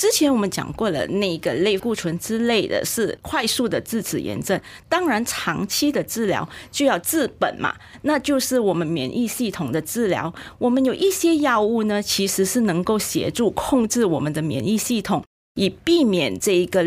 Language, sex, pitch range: Chinese, female, 185-250 Hz